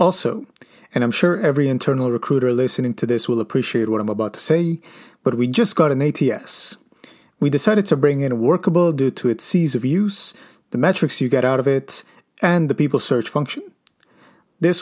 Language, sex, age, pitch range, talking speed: English, male, 30-49, 130-180 Hz, 195 wpm